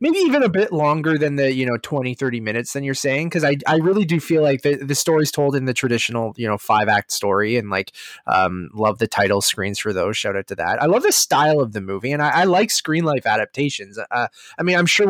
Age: 20-39